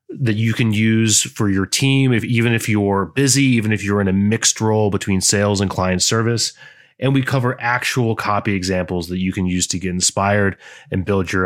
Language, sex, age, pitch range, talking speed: English, male, 30-49, 100-125 Hz, 210 wpm